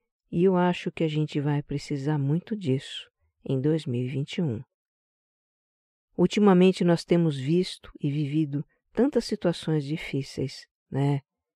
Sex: female